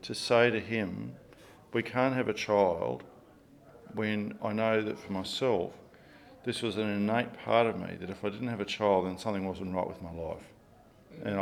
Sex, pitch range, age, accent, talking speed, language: male, 100-125 Hz, 50-69, Australian, 195 wpm, English